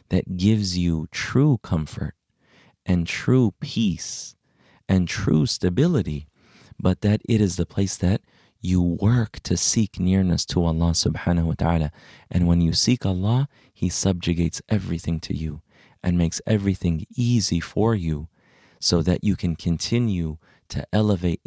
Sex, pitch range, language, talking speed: male, 85-105 Hz, English, 145 wpm